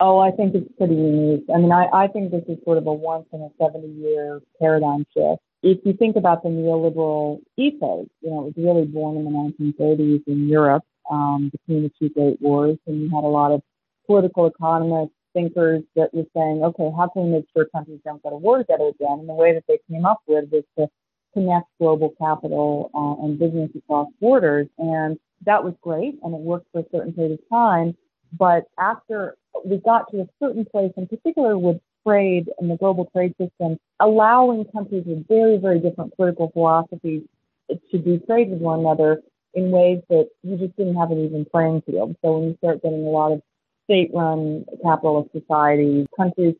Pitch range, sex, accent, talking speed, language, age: 155-180 Hz, female, American, 200 wpm, English, 40-59